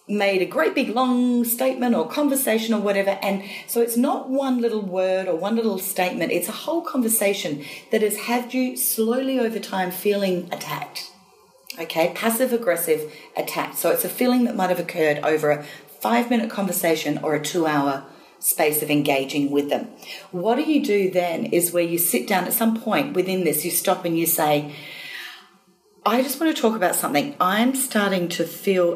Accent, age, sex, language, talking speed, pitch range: Australian, 40-59, female, English, 190 wpm, 165-230 Hz